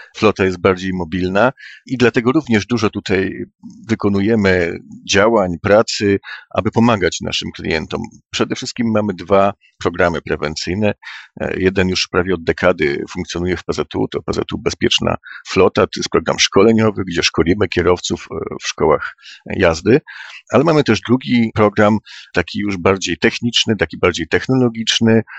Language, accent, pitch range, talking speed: Polish, native, 90-110 Hz, 130 wpm